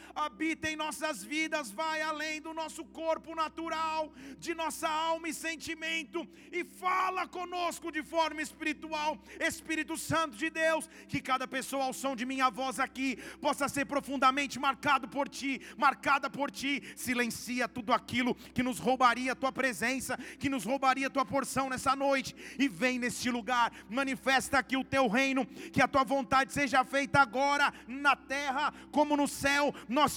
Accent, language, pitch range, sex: Brazilian, Portuguese, 260-310 Hz, male